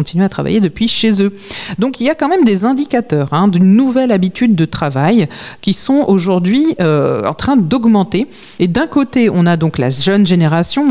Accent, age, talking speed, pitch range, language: French, 40-59, 195 wpm, 165-235 Hz, French